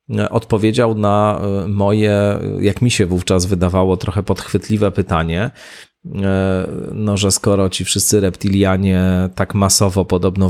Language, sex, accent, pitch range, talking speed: Polish, male, native, 90-105 Hz, 115 wpm